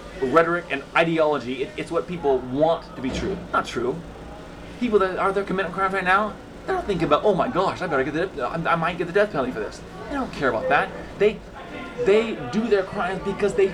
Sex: male